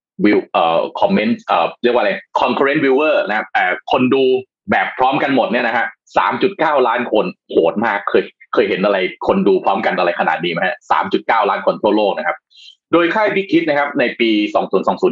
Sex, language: male, Thai